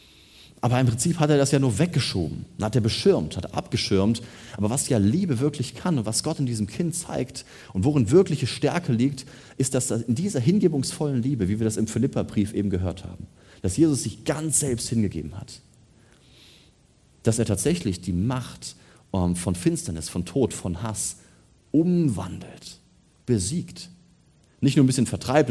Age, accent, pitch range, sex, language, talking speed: 30-49, German, 105-140 Hz, male, German, 170 wpm